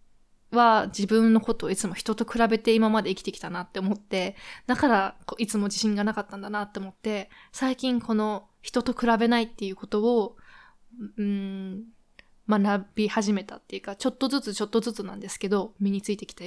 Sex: female